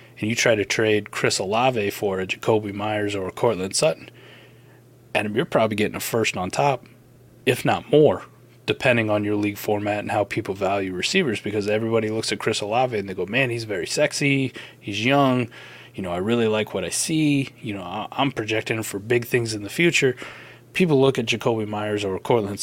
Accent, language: American, English